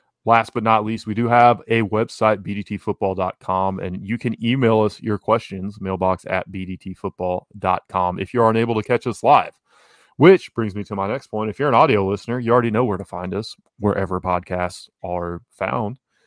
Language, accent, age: English, American, 20-39